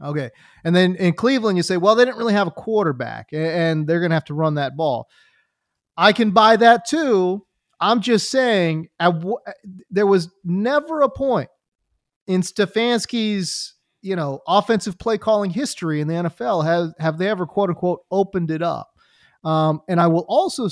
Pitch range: 145-195 Hz